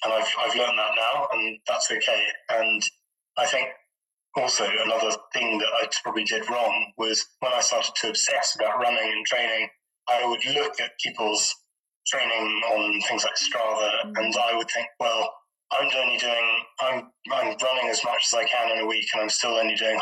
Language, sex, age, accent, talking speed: English, male, 20-39, British, 190 wpm